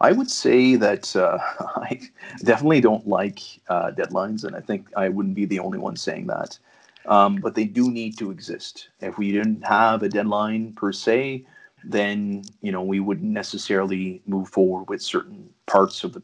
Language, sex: English, male